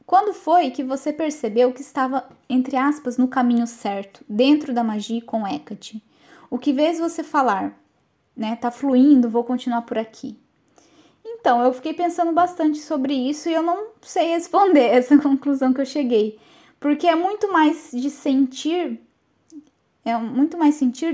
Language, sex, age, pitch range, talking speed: Portuguese, female, 10-29, 245-315 Hz, 160 wpm